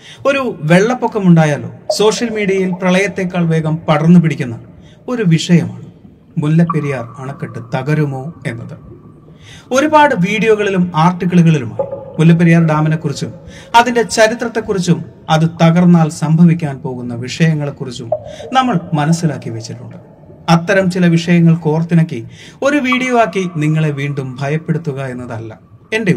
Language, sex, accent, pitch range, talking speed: Malayalam, male, native, 145-190 Hz, 95 wpm